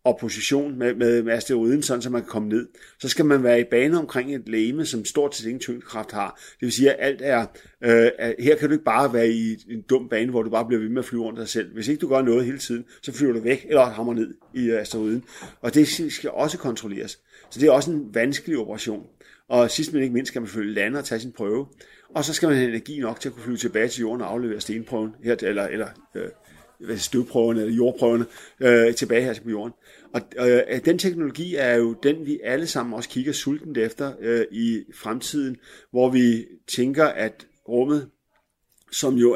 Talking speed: 230 wpm